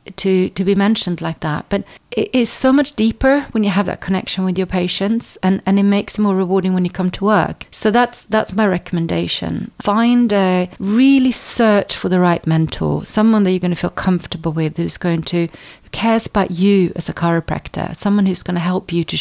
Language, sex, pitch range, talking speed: English, female, 175-210 Hz, 215 wpm